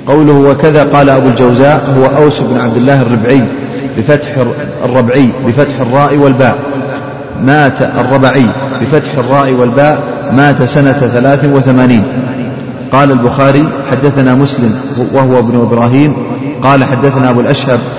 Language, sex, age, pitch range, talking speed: Arabic, male, 40-59, 125-140 Hz, 120 wpm